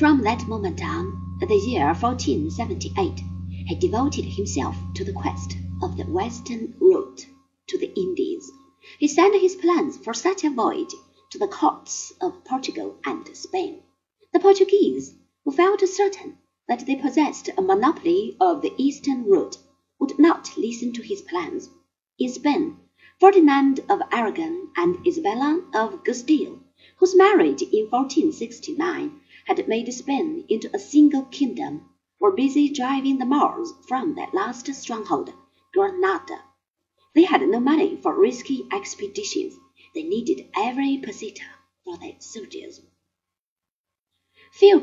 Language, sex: Chinese, female